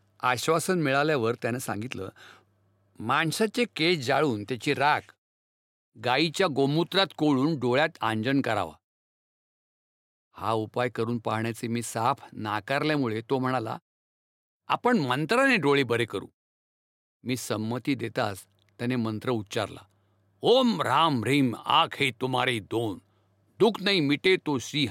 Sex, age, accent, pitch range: male, 50-69, native, 110-155 Hz